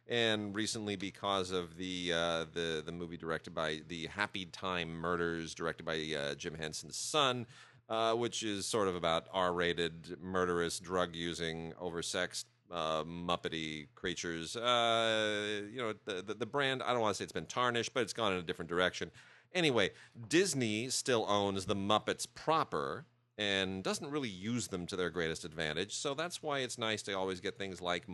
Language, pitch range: English, 85-110 Hz